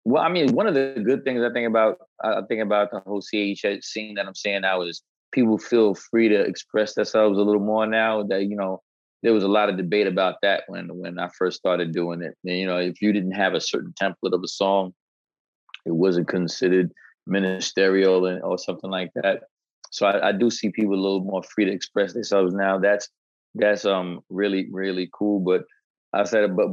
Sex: male